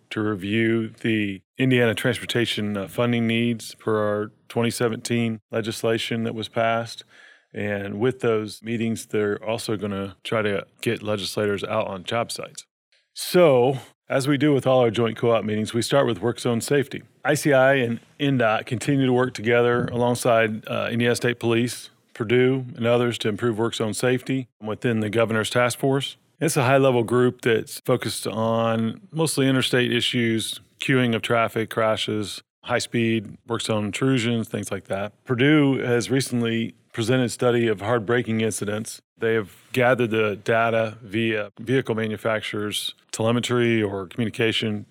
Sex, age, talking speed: male, 40-59, 150 wpm